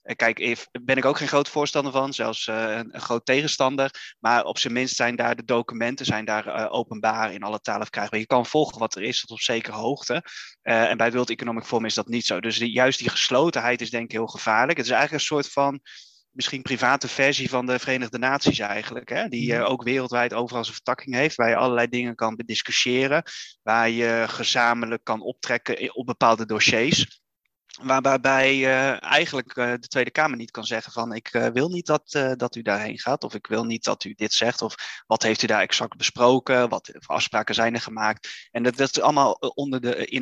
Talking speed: 210 wpm